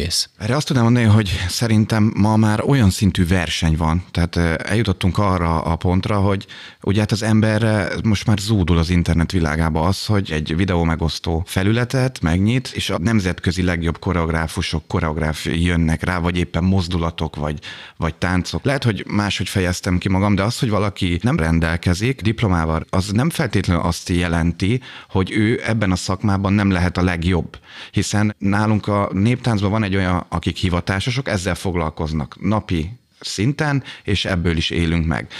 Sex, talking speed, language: male, 160 wpm, Hungarian